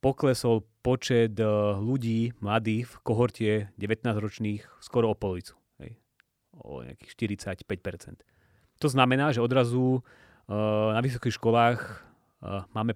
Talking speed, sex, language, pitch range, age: 105 wpm, male, Slovak, 105-135 Hz, 30-49